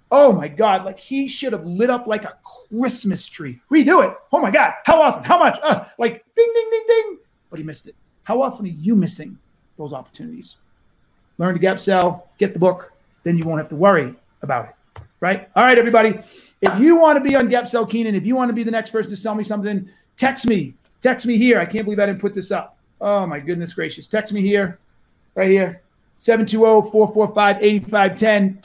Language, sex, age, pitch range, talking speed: English, male, 30-49, 165-230 Hz, 215 wpm